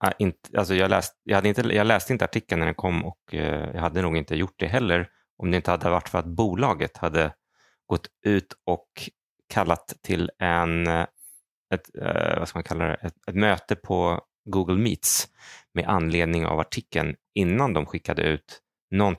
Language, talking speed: Swedish, 180 wpm